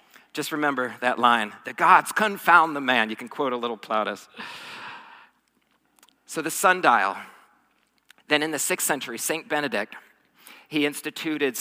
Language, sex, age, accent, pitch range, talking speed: English, male, 40-59, American, 115-145 Hz, 140 wpm